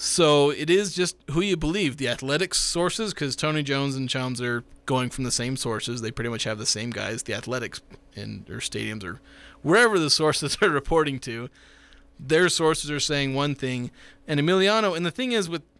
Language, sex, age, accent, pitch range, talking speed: English, male, 20-39, American, 125-160 Hz, 200 wpm